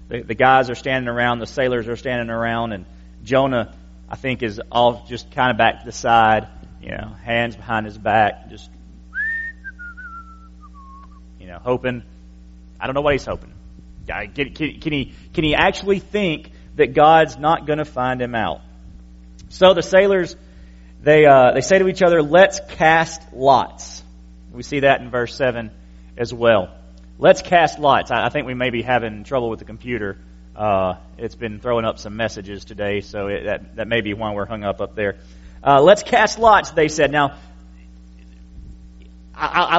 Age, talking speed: 30-49, 175 wpm